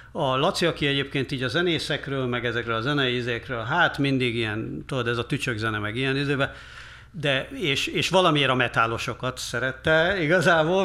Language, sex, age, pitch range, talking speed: Hungarian, male, 60-79, 125-165 Hz, 165 wpm